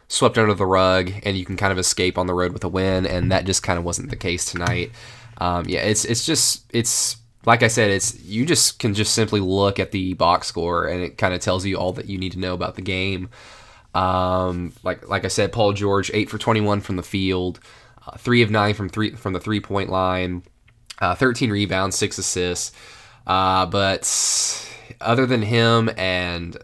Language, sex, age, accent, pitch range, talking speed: English, male, 20-39, American, 95-115 Hz, 210 wpm